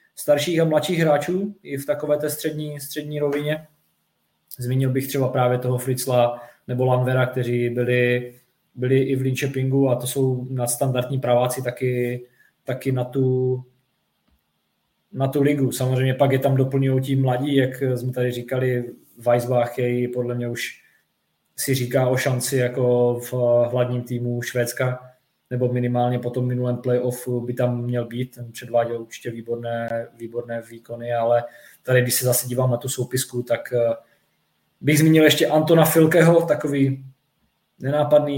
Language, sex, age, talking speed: Czech, male, 20-39, 150 wpm